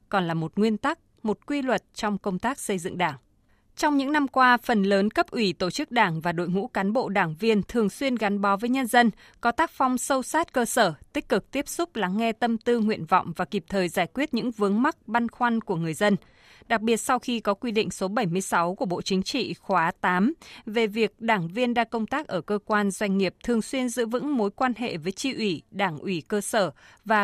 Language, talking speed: Vietnamese, 245 wpm